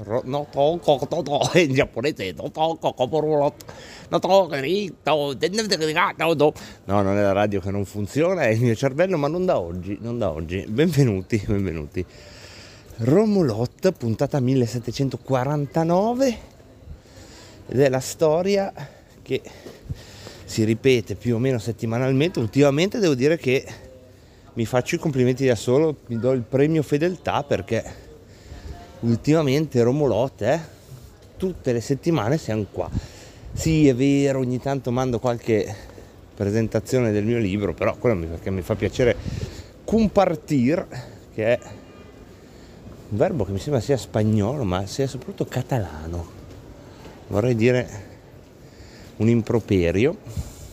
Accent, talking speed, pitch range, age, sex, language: native, 110 wpm, 105-145 Hz, 30-49, male, Italian